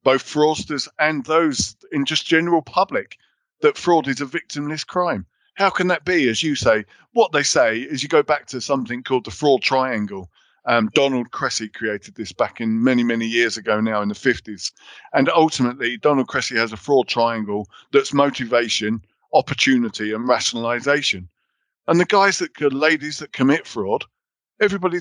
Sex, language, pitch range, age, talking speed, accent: male, English, 120-170 Hz, 50-69, 170 wpm, British